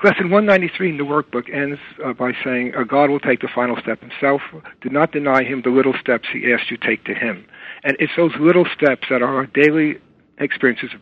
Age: 60-79